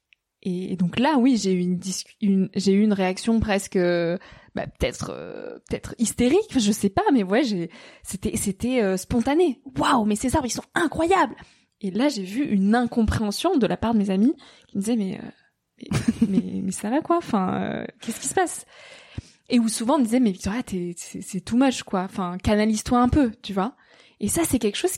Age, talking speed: 20-39, 215 wpm